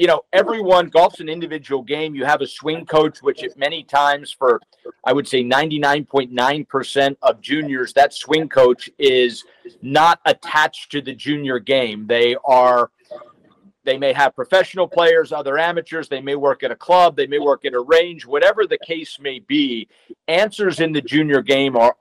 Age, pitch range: 50-69, 140-195 Hz